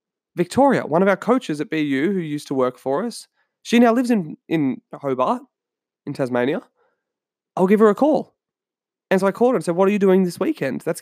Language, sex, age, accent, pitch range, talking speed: English, male, 20-39, Australian, 140-195 Hz, 220 wpm